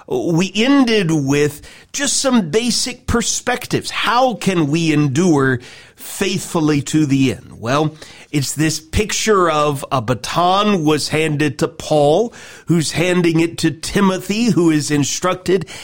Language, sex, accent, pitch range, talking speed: English, male, American, 140-195 Hz, 130 wpm